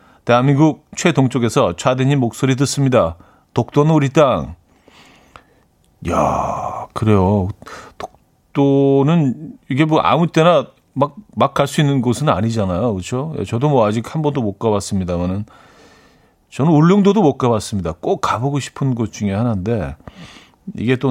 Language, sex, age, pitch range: Korean, male, 40-59, 100-140 Hz